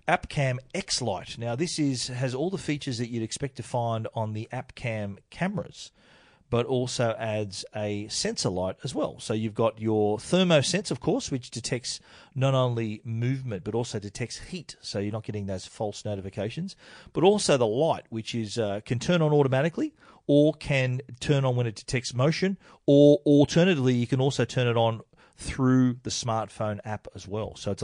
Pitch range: 105-130 Hz